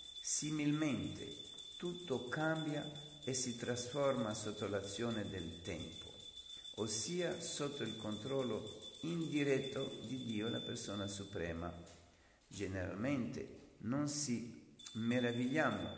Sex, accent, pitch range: male, native, 100-120 Hz